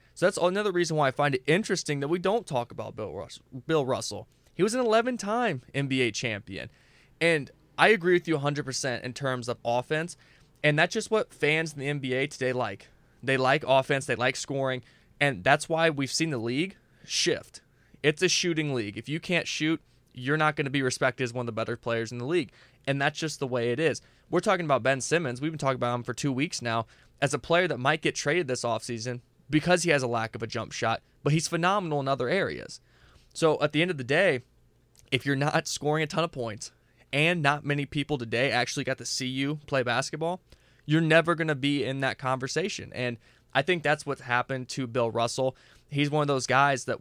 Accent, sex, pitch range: American, male, 125-155 Hz